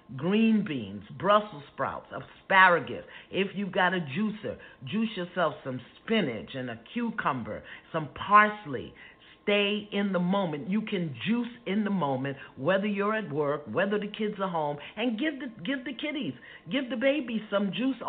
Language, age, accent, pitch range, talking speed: English, 50-69, American, 175-255 Hz, 160 wpm